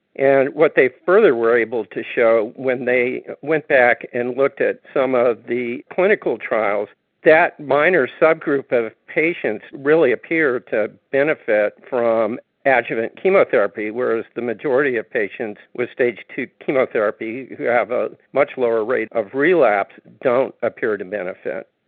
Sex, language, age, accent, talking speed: male, English, 50-69, American, 145 wpm